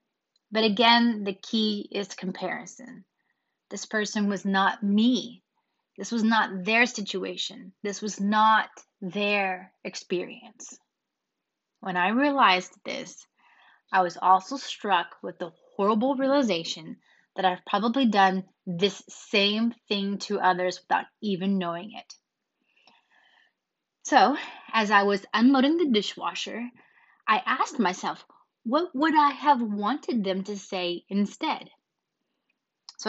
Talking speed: 120 wpm